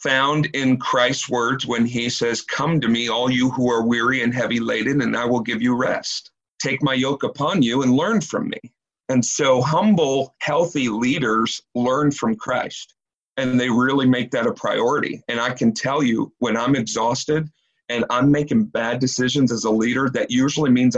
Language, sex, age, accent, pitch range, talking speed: English, male, 40-59, American, 120-140 Hz, 190 wpm